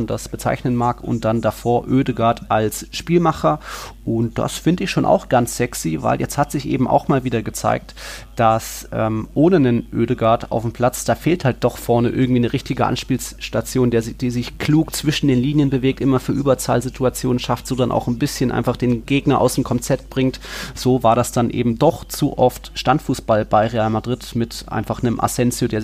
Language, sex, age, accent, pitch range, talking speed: German, male, 30-49, German, 115-130 Hz, 195 wpm